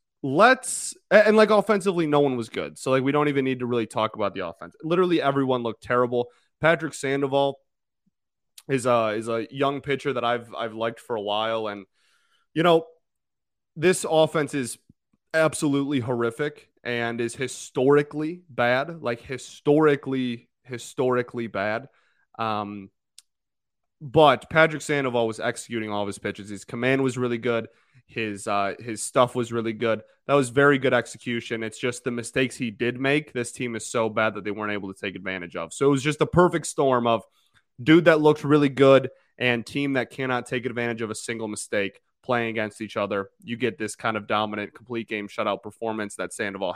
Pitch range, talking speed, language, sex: 115-140 Hz, 180 wpm, English, male